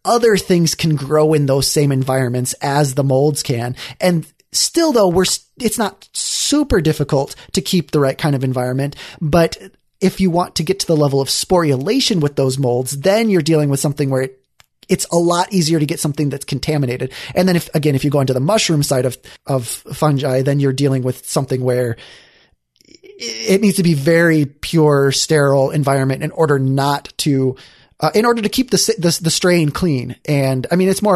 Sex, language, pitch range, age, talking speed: male, English, 135-170 Hz, 20-39, 200 wpm